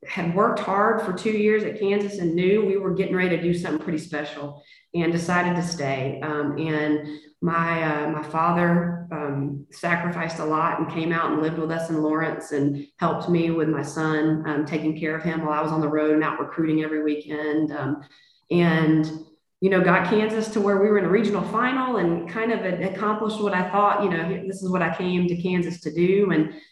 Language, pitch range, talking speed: English, 155-195 Hz, 220 wpm